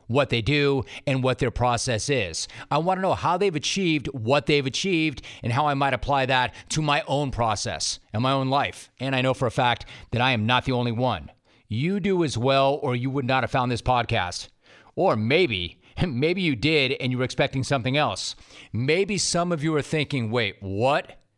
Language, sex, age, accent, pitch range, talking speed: English, male, 40-59, American, 120-150 Hz, 215 wpm